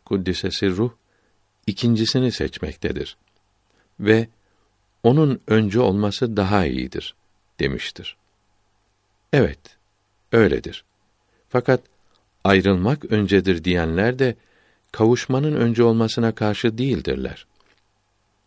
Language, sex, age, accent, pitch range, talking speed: Turkish, male, 60-79, native, 95-115 Hz, 75 wpm